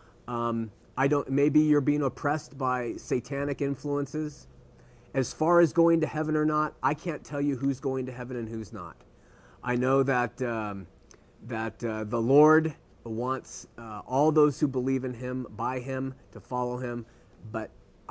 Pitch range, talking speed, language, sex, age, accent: 120-150 Hz, 170 wpm, English, male, 30-49, American